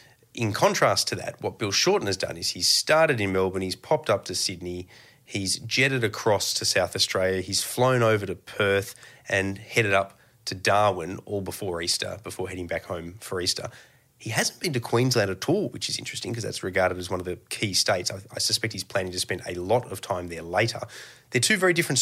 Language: English